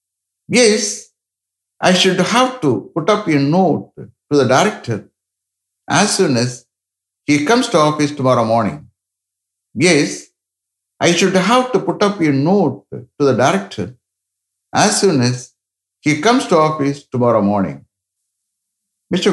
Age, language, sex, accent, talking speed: 60-79, English, male, Indian, 135 wpm